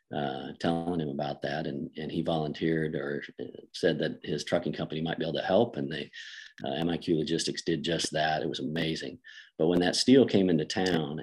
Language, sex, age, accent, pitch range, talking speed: English, male, 40-59, American, 75-85 Hz, 205 wpm